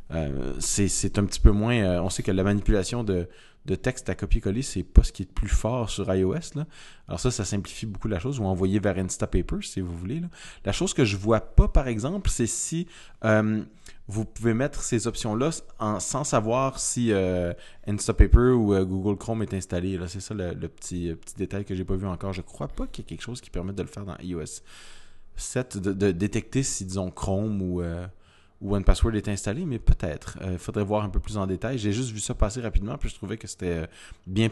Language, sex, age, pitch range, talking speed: French, male, 20-39, 90-110 Hz, 245 wpm